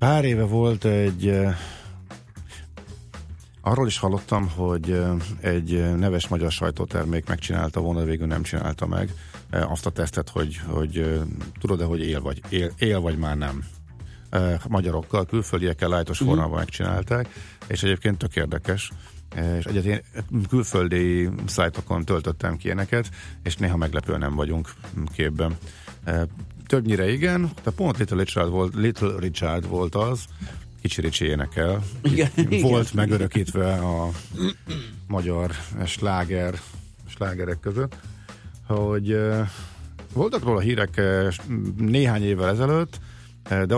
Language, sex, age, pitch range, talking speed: Hungarian, male, 50-69, 85-105 Hz, 115 wpm